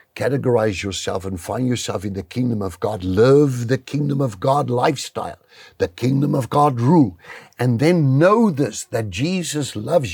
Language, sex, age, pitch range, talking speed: English, male, 60-79, 115-155 Hz, 165 wpm